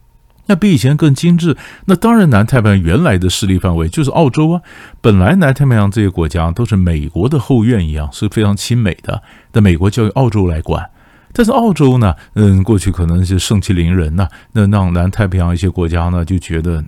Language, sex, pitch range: Chinese, male, 85-110 Hz